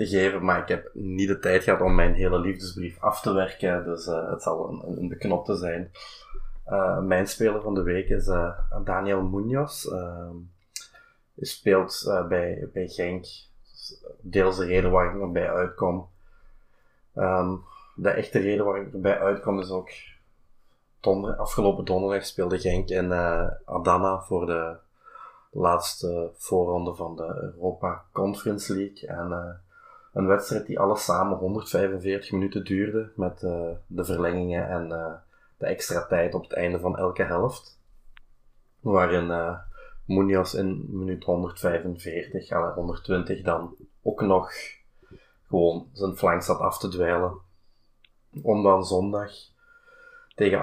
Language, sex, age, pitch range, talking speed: Dutch, male, 20-39, 90-100 Hz, 145 wpm